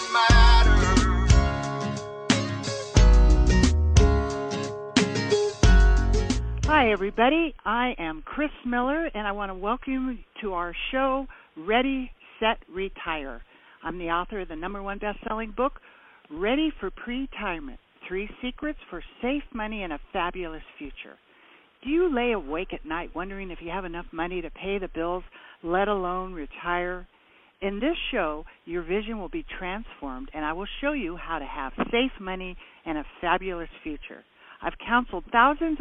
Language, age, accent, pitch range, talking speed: English, 60-79, American, 170-250 Hz, 140 wpm